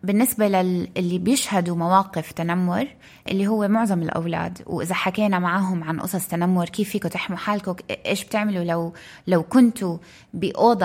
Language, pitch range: Arabic, 175-220 Hz